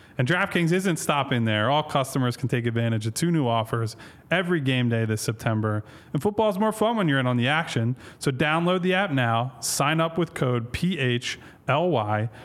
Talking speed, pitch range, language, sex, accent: 195 wpm, 115-155 Hz, English, male, American